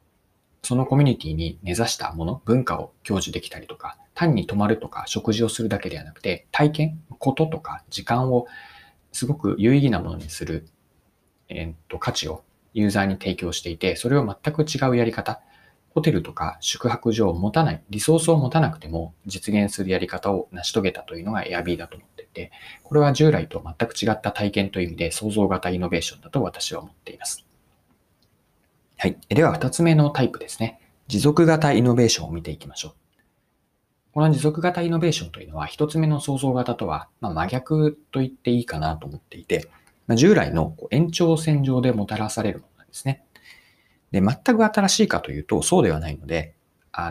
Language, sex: Japanese, male